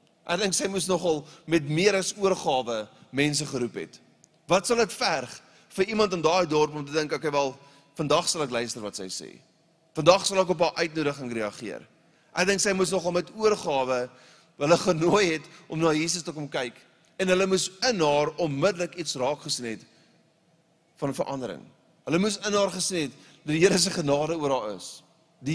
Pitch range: 145-185 Hz